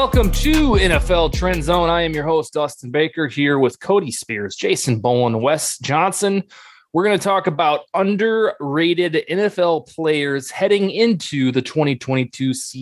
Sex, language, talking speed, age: male, English, 145 wpm, 20-39